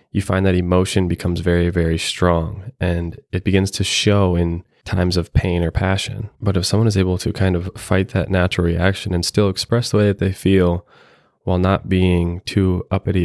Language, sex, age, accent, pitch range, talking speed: English, male, 20-39, American, 85-100 Hz, 200 wpm